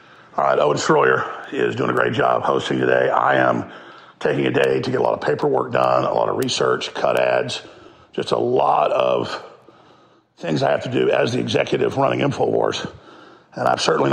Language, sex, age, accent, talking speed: English, male, 50-69, American, 195 wpm